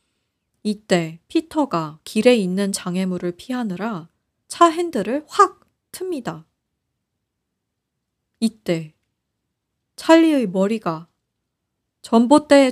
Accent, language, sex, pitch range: native, Korean, female, 175-275 Hz